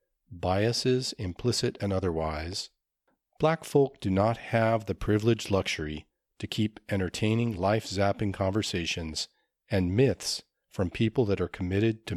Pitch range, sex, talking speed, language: 90-115 Hz, male, 125 wpm, English